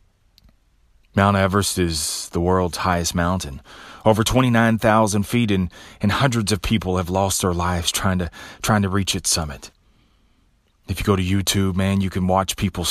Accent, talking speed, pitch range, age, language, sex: American, 165 wpm, 90-110 Hz, 30-49, English, male